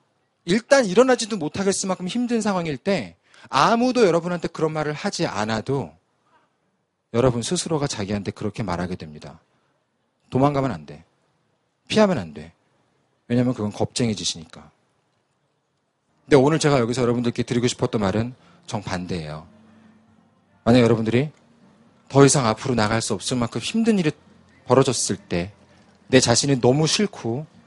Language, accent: Korean, native